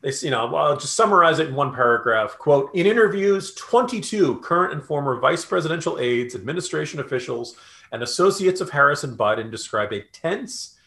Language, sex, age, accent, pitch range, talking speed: English, male, 40-59, American, 120-175 Hz, 175 wpm